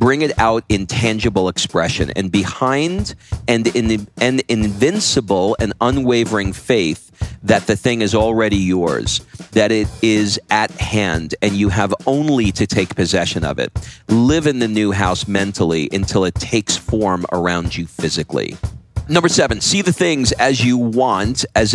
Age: 40-59